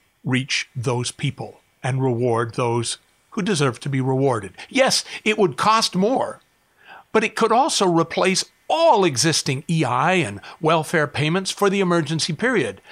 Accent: American